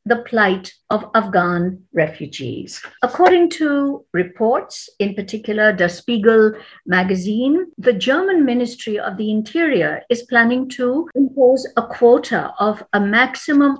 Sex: female